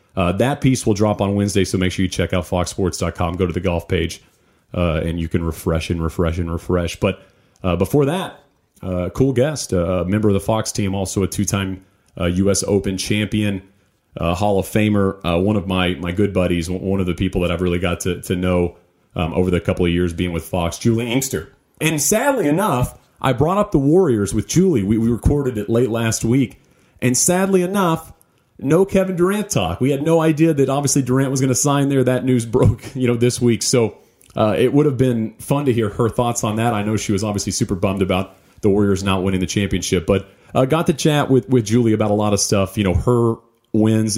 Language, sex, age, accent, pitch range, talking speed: English, male, 40-59, American, 95-120 Hz, 230 wpm